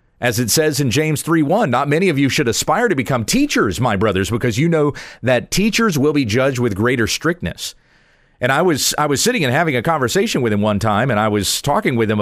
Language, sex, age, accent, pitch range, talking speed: English, male, 40-59, American, 115-160 Hz, 240 wpm